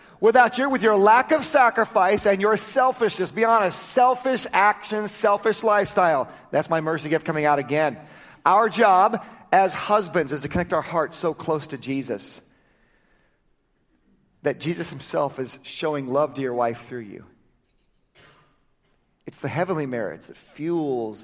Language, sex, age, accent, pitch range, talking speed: English, male, 40-59, American, 130-180 Hz, 150 wpm